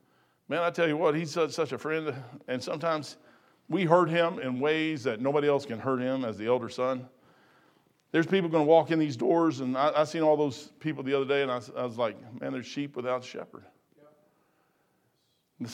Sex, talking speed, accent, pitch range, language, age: male, 215 wpm, American, 130-195 Hz, English, 50-69